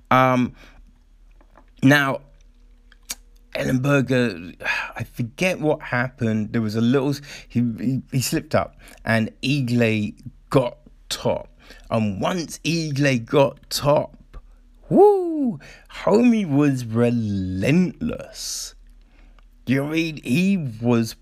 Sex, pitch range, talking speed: male, 115-145 Hz, 105 wpm